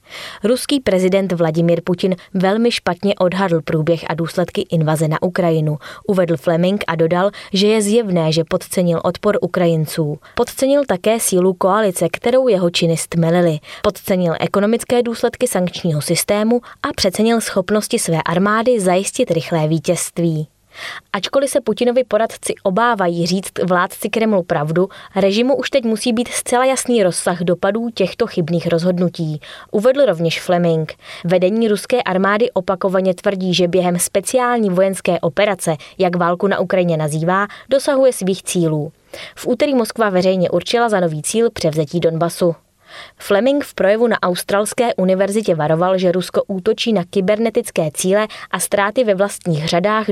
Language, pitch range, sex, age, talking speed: Czech, 170-215 Hz, female, 20-39, 140 wpm